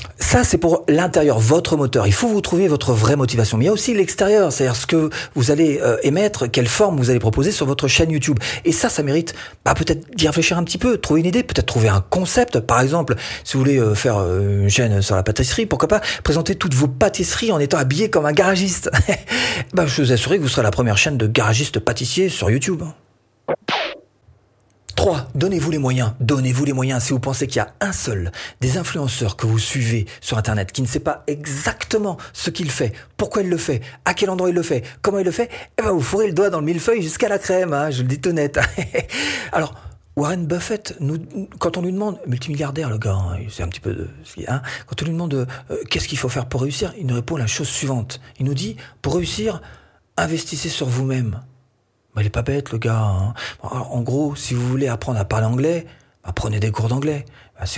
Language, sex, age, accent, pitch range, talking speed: French, male, 40-59, French, 115-165 Hz, 225 wpm